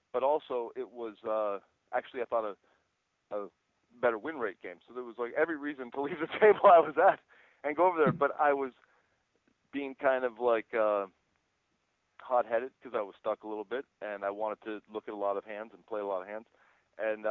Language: English